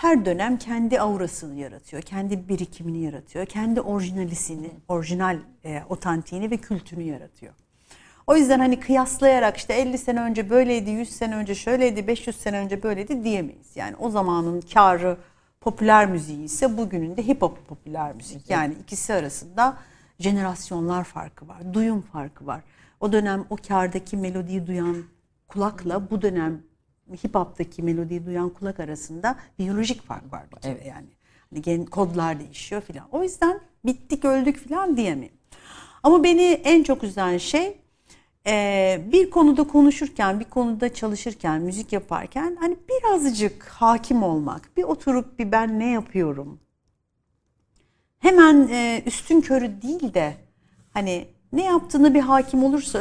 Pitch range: 175-255 Hz